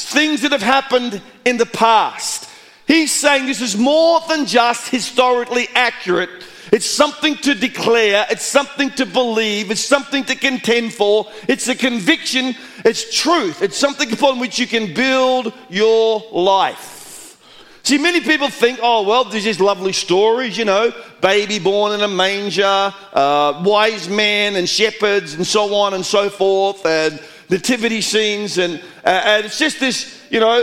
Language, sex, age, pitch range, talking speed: English, male, 50-69, 205-260 Hz, 160 wpm